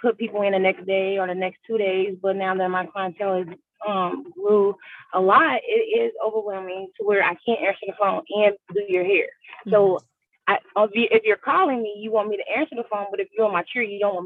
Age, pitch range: 20-39, 190-225 Hz